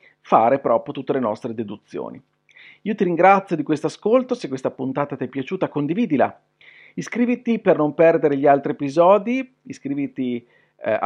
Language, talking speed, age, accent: Italian, 150 wpm, 40-59, native